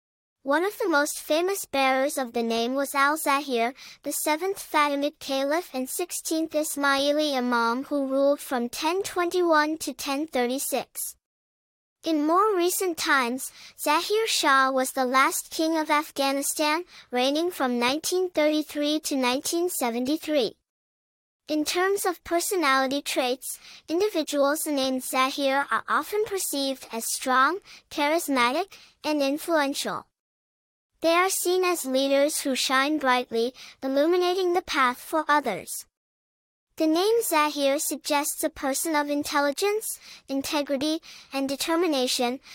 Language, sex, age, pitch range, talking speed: English, male, 10-29, 270-335 Hz, 115 wpm